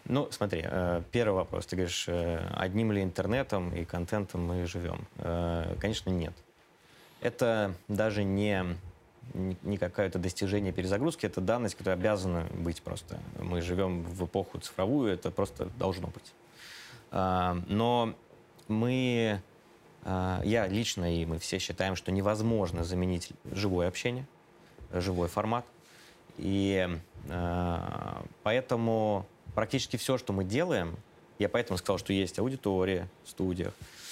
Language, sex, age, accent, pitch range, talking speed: Russian, male, 20-39, native, 90-110 Hz, 120 wpm